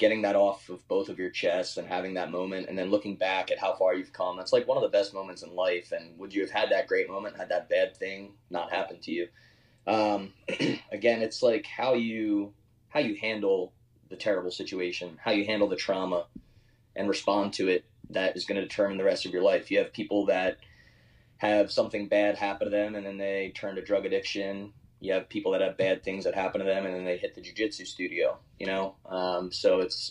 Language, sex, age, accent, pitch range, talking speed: English, male, 20-39, American, 95-110 Hz, 235 wpm